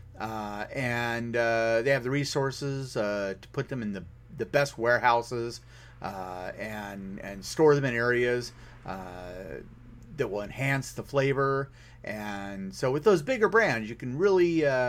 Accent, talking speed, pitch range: American, 155 wpm, 115-140 Hz